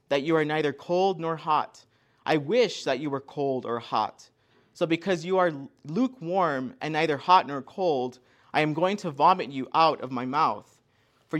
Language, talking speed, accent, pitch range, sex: English, 190 wpm, American, 125-165 Hz, male